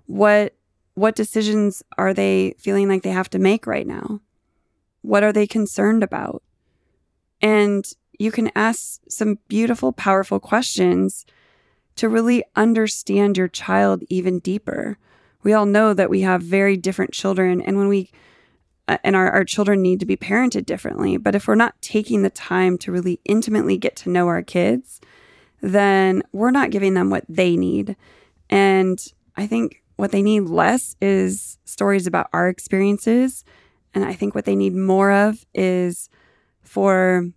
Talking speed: 160 wpm